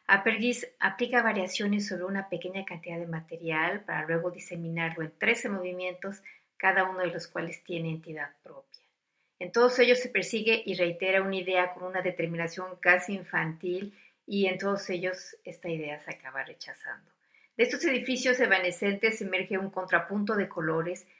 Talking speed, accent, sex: 155 wpm, Mexican, female